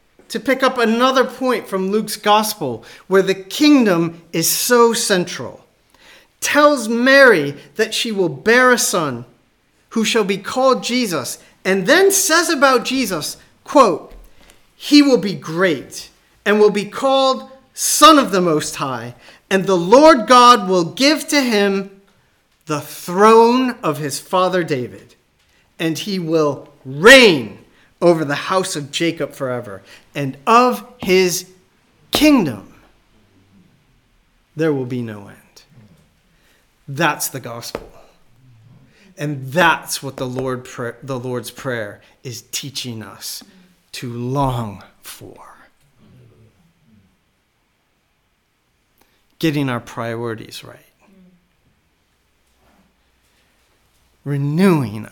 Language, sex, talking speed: English, male, 110 wpm